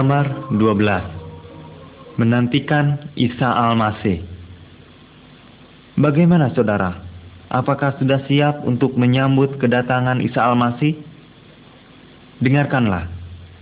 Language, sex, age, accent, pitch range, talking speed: Indonesian, male, 30-49, native, 105-135 Hz, 70 wpm